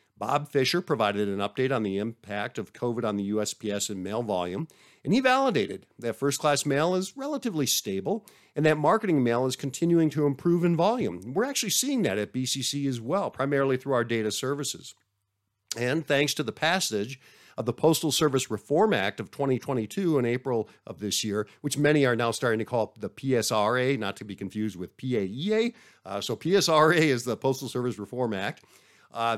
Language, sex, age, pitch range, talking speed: English, male, 50-69, 105-155 Hz, 185 wpm